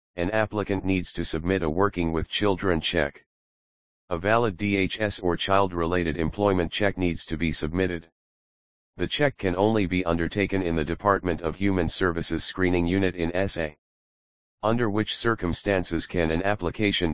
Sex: male